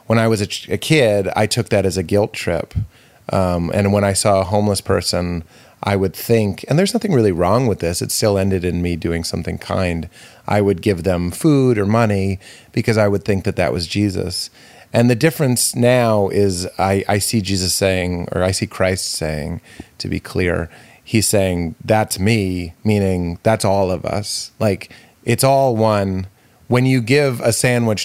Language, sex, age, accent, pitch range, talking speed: English, male, 30-49, American, 95-115 Hz, 195 wpm